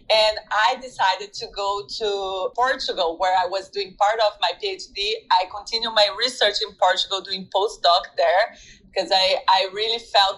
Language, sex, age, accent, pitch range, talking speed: English, female, 30-49, Brazilian, 195-230 Hz, 170 wpm